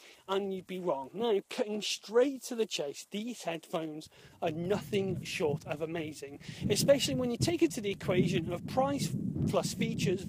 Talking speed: 170 wpm